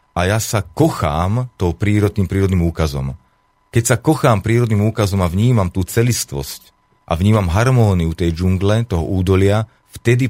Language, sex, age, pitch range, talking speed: Slovak, male, 30-49, 90-110 Hz, 145 wpm